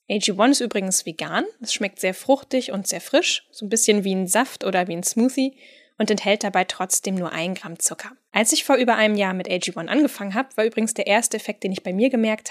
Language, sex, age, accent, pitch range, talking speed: German, female, 10-29, German, 185-240 Hz, 235 wpm